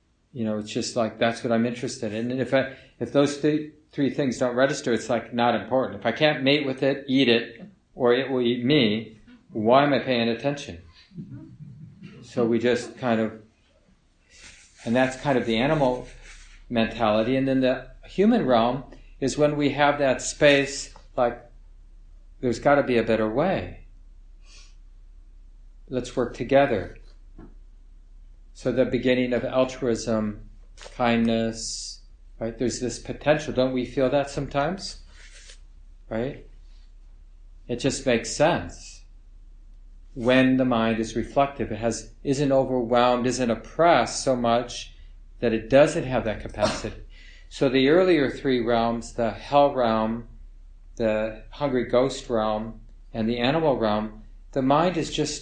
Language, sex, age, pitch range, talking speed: English, male, 50-69, 105-135 Hz, 145 wpm